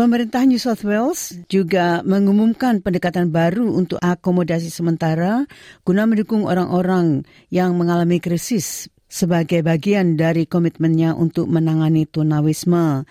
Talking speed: 110 wpm